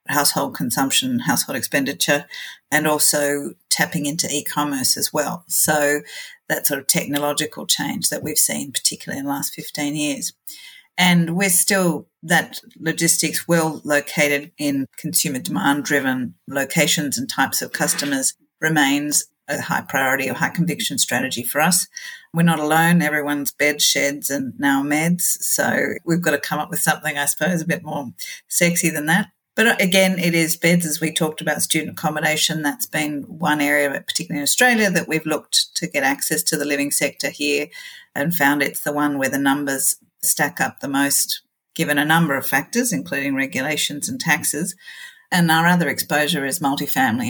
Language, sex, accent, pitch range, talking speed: English, female, Australian, 145-175 Hz, 170 wpm